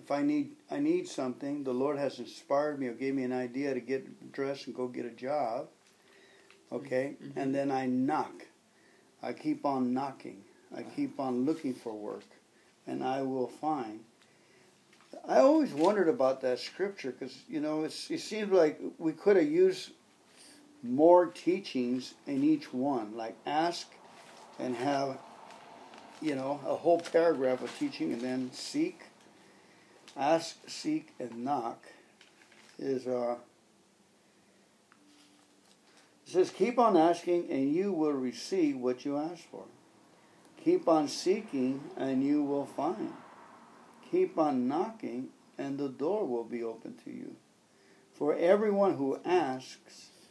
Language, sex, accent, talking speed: English, male, American, 145 wpm